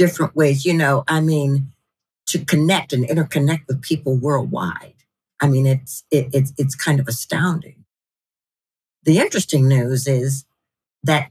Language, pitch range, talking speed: English, 145-200 Hz, 145 wpm